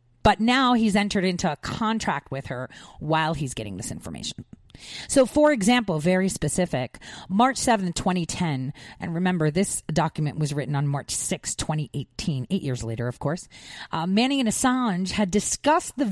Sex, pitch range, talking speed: female, 145-225 Hz, 165 wpm